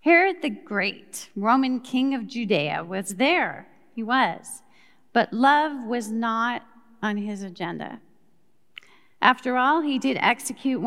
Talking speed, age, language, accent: 125 wpm, 40-59, English, American